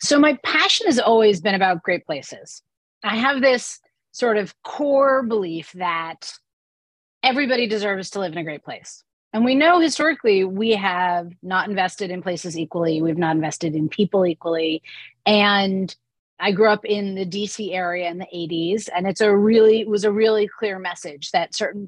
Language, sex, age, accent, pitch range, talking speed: English, female, 30-49, American, 180-230 Hz, 180 wpm